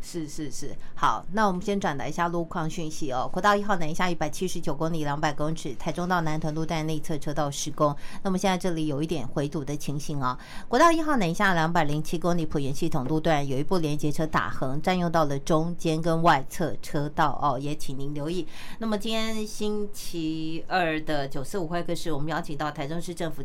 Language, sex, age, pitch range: Chinese, female, 50-69, 150-180 Hz